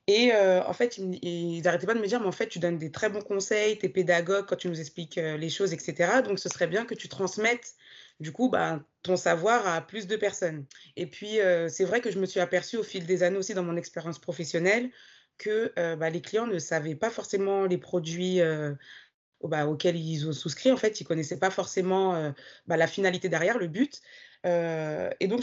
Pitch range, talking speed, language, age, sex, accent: 175-210 Hz, 235 wpm, French, 20-39, female, French